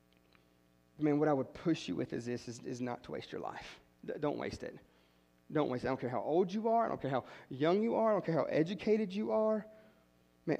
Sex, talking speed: male, 250 wpm